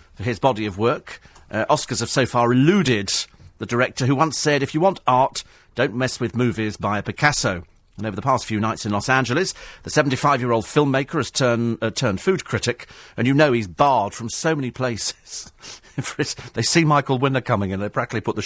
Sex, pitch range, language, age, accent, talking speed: male, 110-145 Hz, English, 40-59, British, 210 wpm